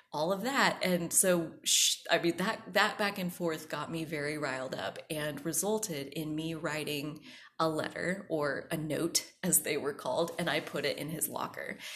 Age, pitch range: 20-39, 155-190 Hz